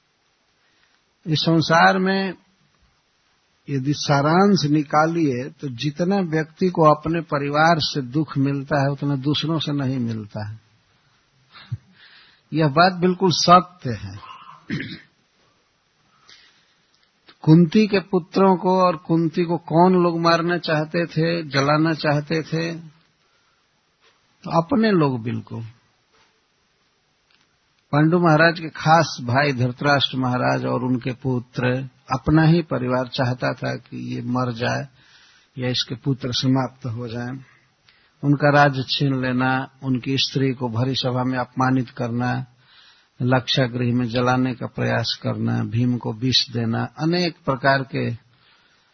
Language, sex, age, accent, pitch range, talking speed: Hindi, male, 60-79, native, 125-160 Hz, 120 wpm